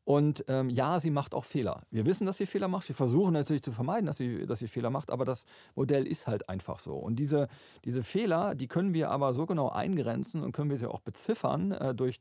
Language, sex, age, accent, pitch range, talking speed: German, male, 40-59, German, 120-145 Hz, 240 wpm